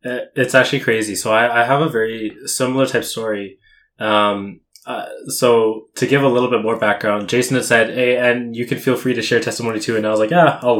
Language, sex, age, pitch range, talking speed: English, male, 20-39, 105-125 Hz, 230 wpm